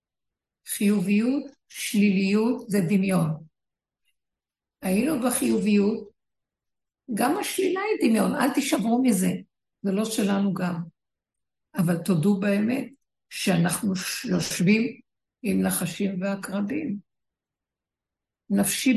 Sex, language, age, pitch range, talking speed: female, Hebrew, 60-79, 180-220 Hz, 80 wpm